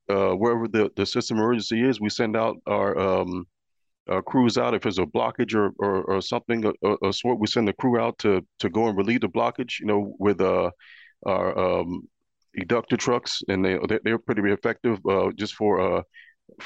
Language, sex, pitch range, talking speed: English, male, 95-110 Hz, 200 wpm